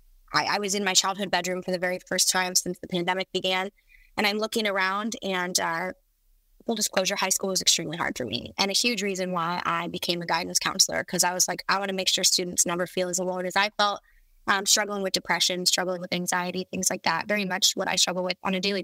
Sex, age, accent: female, 10-29, American